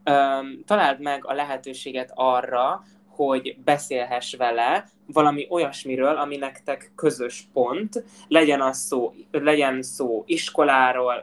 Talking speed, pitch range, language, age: 100 wpm, 125-155 Hz, Hungarian, 20-39